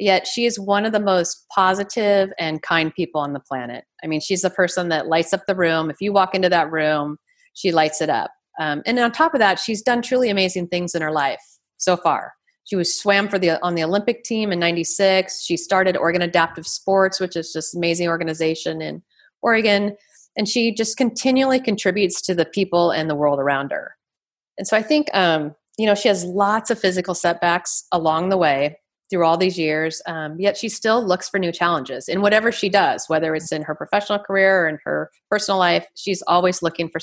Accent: American